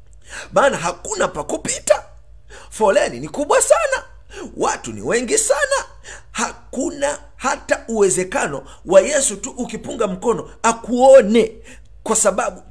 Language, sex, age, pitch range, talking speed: Swahili, male, 50-69, 190-255 Hz, 105 wpm